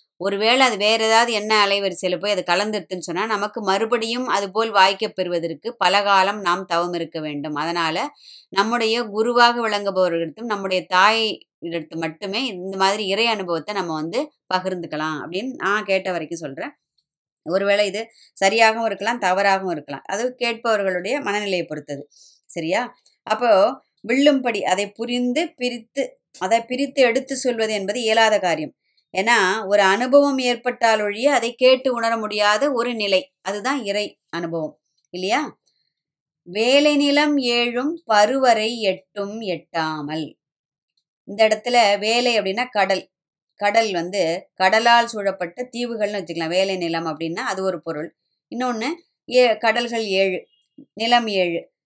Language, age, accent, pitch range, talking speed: Tamil, 20-39, native, 180-240 Hz, 120 wpm